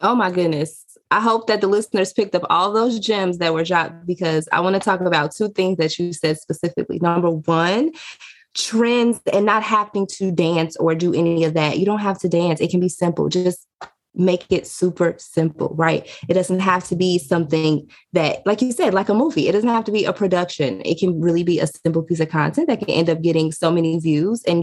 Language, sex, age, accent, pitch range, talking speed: English, female, 20-39, American, 170-210 Hz, 230 wpm